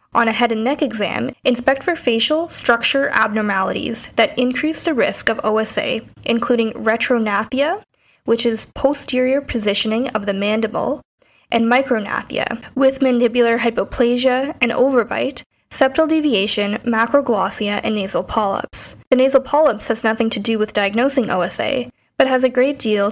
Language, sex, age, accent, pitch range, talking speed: English, female, 10-29, American, 210-255 Hz, 140 wpm